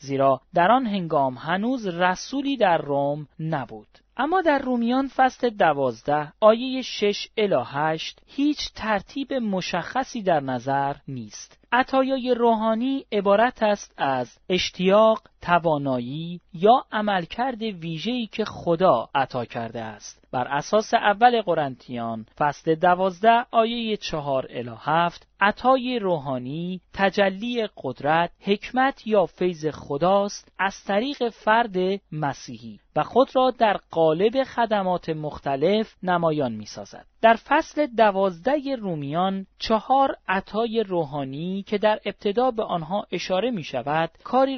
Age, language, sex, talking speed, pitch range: 40-59, Persian, male, 115 wpm, 145-225 Hz